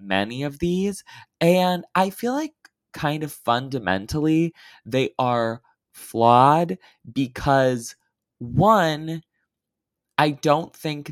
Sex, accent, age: male, American, 20-39